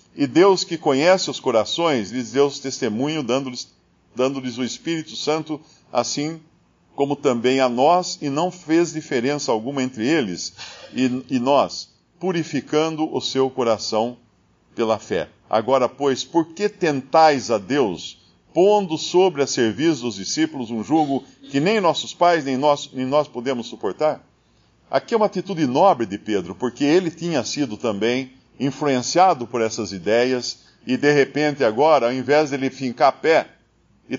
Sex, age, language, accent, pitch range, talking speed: male, 50-69, Portuguese, Brazilian, 120-165 Hz, 155 wpm